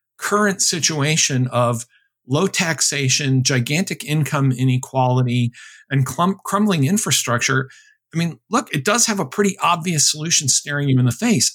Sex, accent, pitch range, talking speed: male, American, 135-190 Hz, 140 wpm